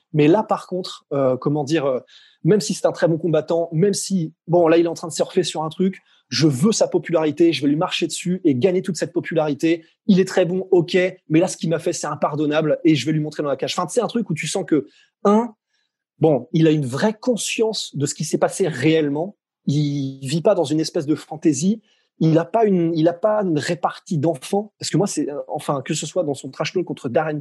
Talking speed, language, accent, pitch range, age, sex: 255 wpm, French, French, 145-185 Hz, 20-39, male